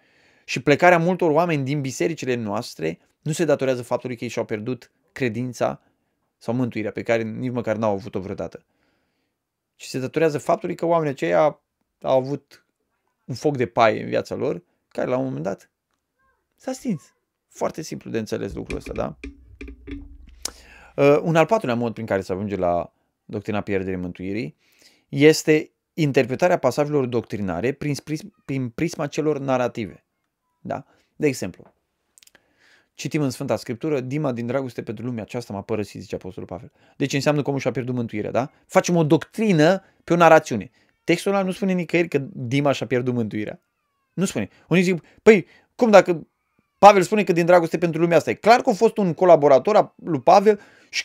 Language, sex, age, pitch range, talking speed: Romanian, male, 20-39, 120-175 Hz, 170 wpm